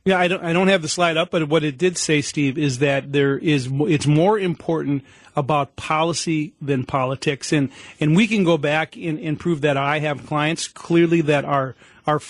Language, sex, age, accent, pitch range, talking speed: English, male, 40-59, American, 145-170 Hz, 210 wpm